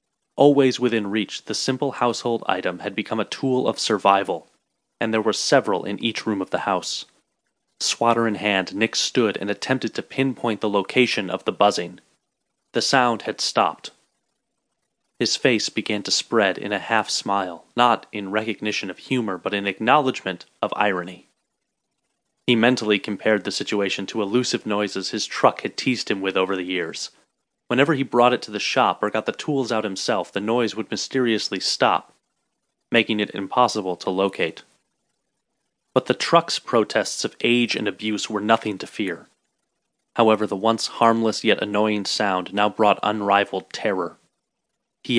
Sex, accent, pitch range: male, American, 100-120 Hz